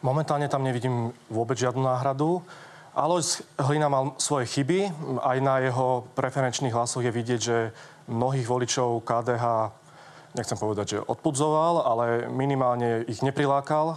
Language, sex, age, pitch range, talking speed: Slovak, male, 30-49, 125-145 Hz, 130 wpm